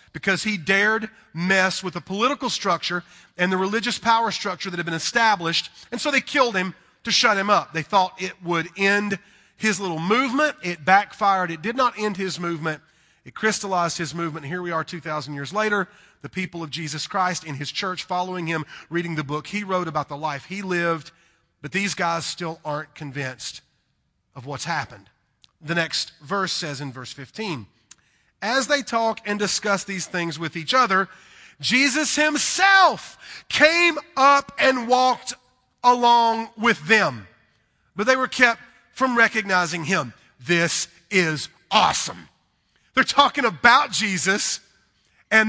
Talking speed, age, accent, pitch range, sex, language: 160 wpm, 40-59, American, 165-230 Hz, male, English